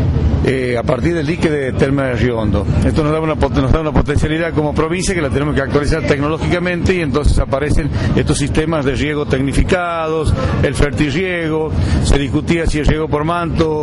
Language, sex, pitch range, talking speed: Spanish, male, 125-160 Hz, 180 wpm